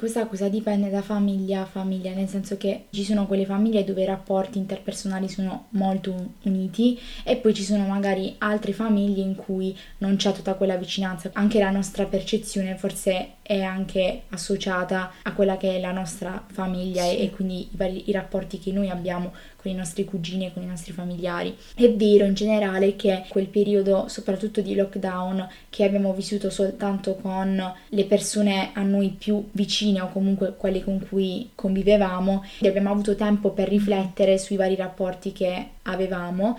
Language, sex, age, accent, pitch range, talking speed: Italian, female, 20-39, native, 190-210 Hz, 175 wpm